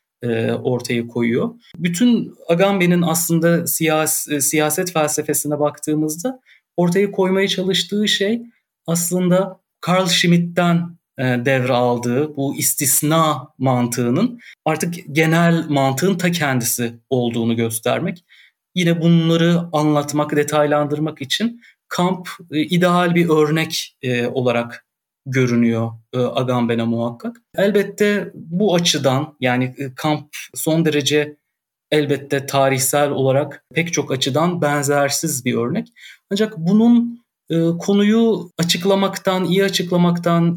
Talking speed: 90 wpm